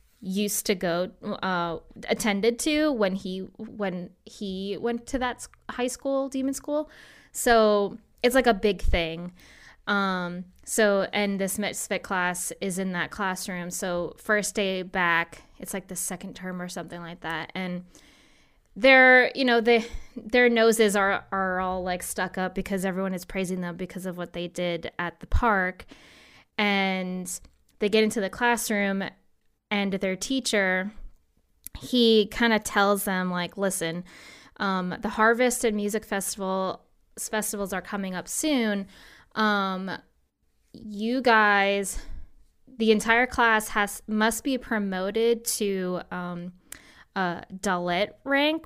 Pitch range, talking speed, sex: 185-225 Hz, 140 wpm, female